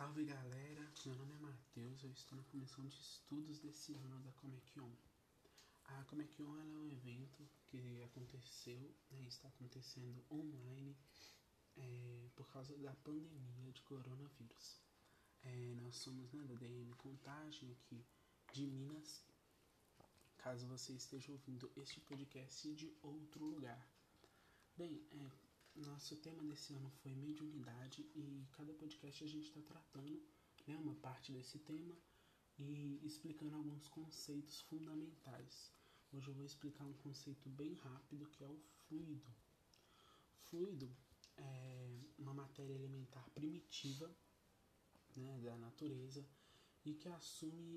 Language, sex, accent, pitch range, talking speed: Portuguese, male, Brazilian, 130-150 Hz, 135 wpm